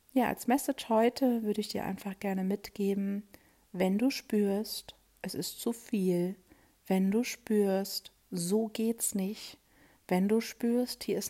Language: German